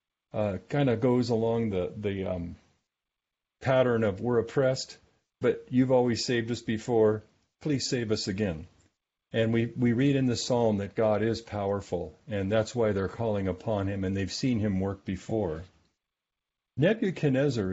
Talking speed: 160 wpm